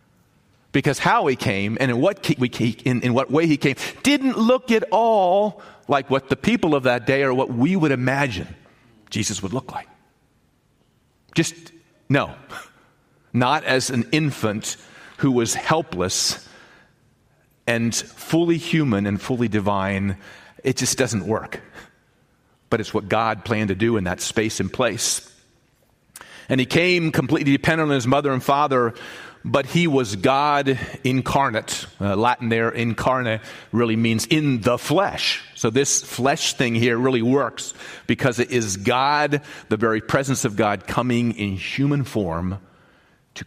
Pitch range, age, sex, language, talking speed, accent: 110-140 Hz, 40-59, male, English, 150 wpm, American